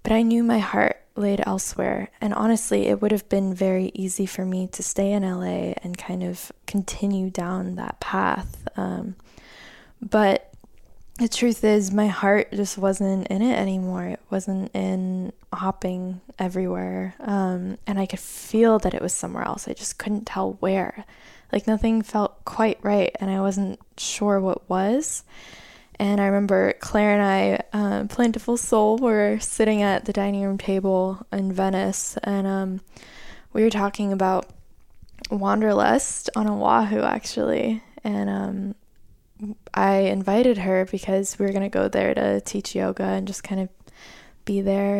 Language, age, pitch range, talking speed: English, 10-29, 185-210 Hz, 160 wpm